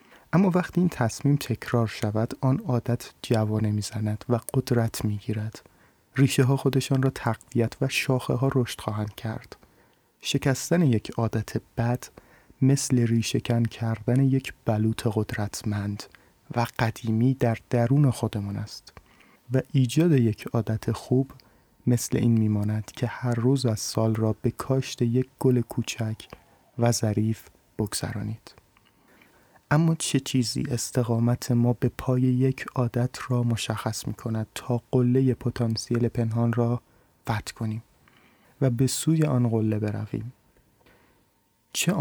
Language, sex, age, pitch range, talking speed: Persian, male, 30-49, 110-130 Hz, 130 wpm